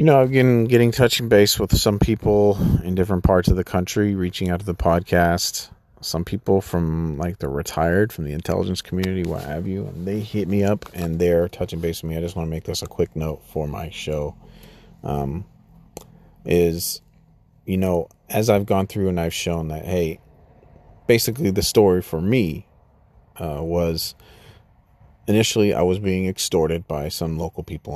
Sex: male